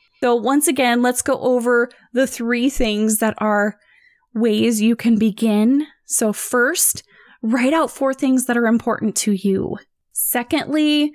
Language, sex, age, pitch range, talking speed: English, female, 20-39, 210-260 Hz, 145 wpm